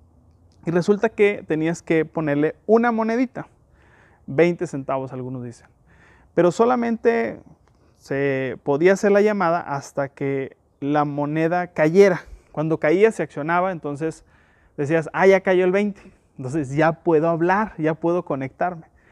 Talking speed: 130 wpm